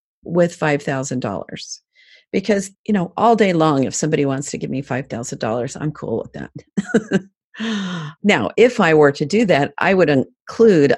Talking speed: 165 wpm